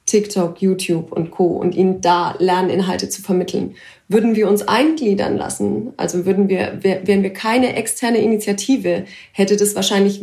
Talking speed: 140 wpm